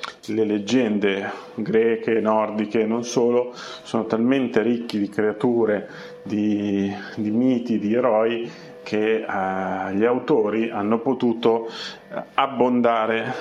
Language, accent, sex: Italian, native, male